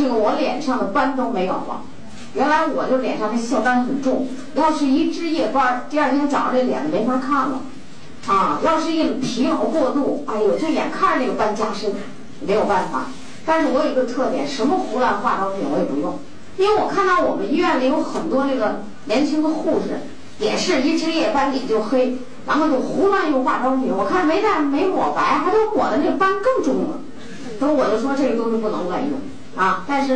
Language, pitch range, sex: Chinese, 240-300 Hz, female